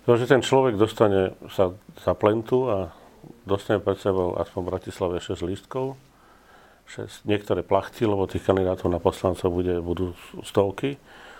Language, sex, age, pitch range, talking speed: Slovak, male, 40-59, 95-110 Hz, 140 wpm